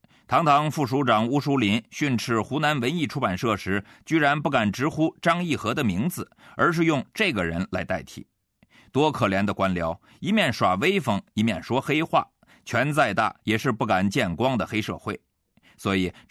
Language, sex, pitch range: Chinese, male, 105-155 Hz